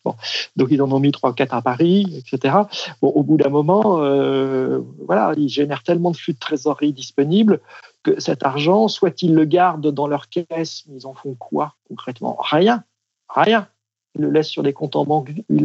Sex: male